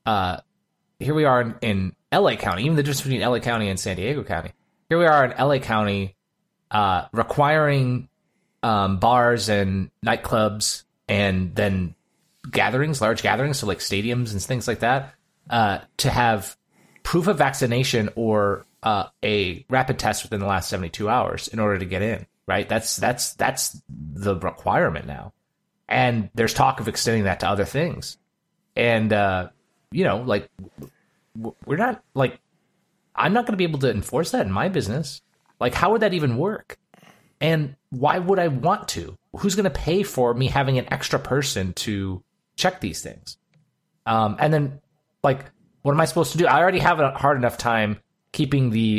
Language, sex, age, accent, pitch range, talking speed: English, male, 30-49, American, 105-150 Hz, 175 wpm